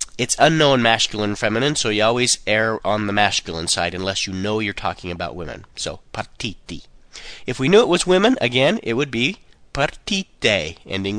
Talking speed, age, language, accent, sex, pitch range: 180 wpm, 30-49, Italian, American, male, 105-155 Hz